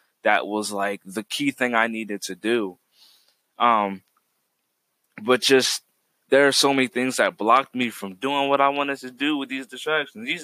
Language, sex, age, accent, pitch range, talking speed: English, male, 20-39, American, 115-135 Hz, 185 wpm